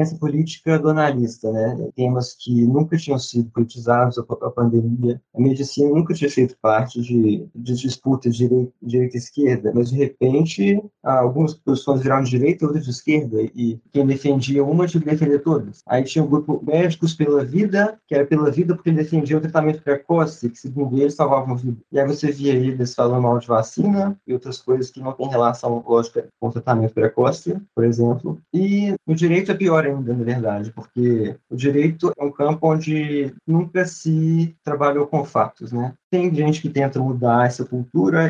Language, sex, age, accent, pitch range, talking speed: Portuguese, male, 20-39, Brazilian, 125-155 Hz, 190 wpm